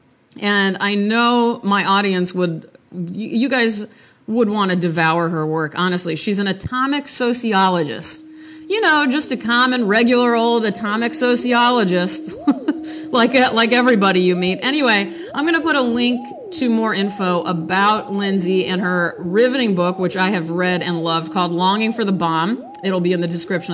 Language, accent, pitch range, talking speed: English, American, 180-245 Hz, 165 wpm